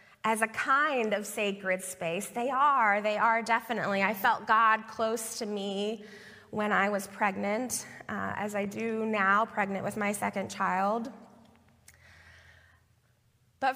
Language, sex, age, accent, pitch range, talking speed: English, female, 20-39, American, 200-245 Hz, 140 wpm